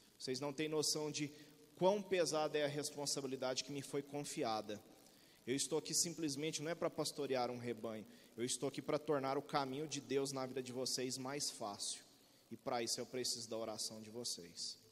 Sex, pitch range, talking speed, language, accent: male, 145-180 Hz, 195 wpm, Portuguese, Brazilian